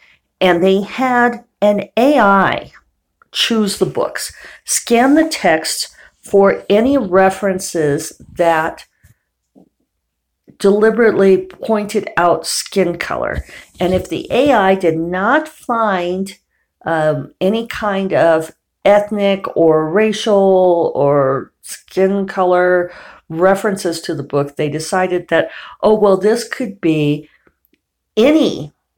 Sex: female